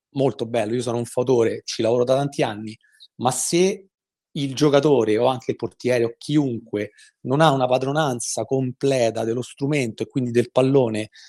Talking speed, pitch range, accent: 170 wpm, 125-150 Hz, native